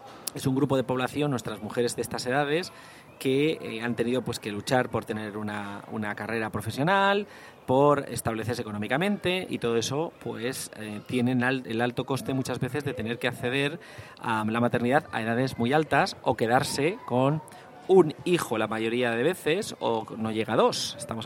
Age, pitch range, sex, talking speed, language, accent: 30-49, 115-140 Hz, male, 180 wpm, Spanish, Spanish